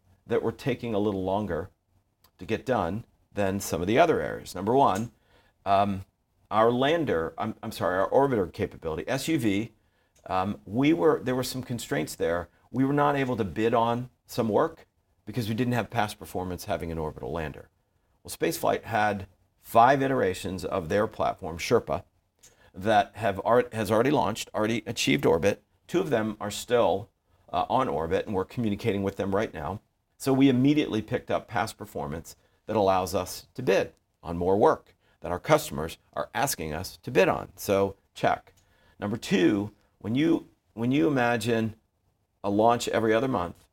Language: English